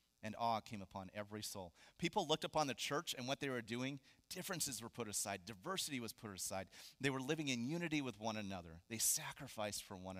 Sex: male